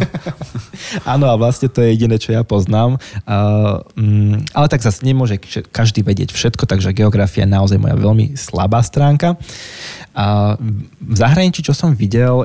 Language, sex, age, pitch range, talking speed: Slovak, male, 20-39, 100-120 Hz, 150 wpm